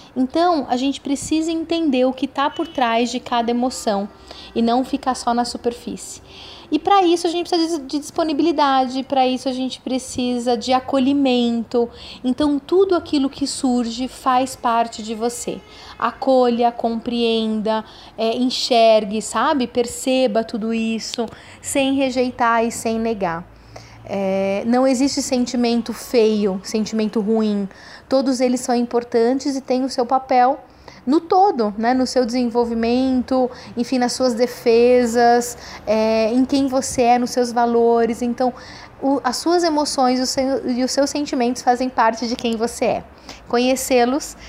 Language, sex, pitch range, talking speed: Portuguese, female, 235-265 Hz, 145 wpm